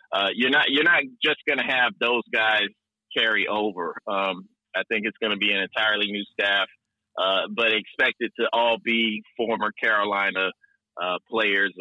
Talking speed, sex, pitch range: 175 wpm, male, 105-125 Hz